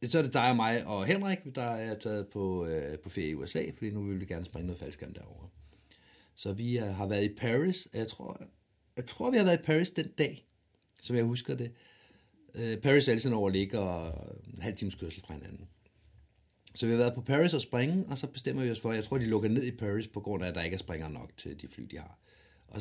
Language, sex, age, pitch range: Danish, male, 60-79, 95-125 Hz